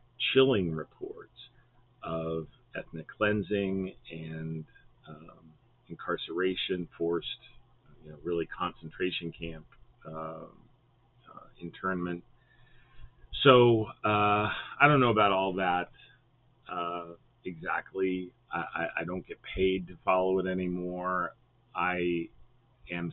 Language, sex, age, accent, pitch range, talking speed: English, male, 40-59, American, 85-120 Hz, 100 wpm